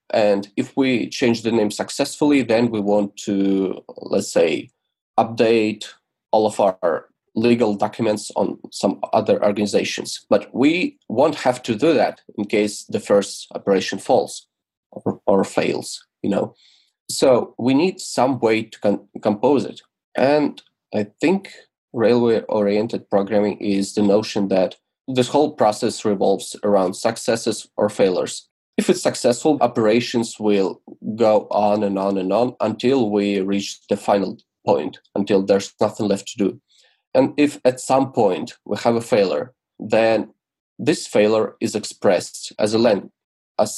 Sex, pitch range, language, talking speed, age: male, 100-120 Hz, English, 145 wpm, 20-39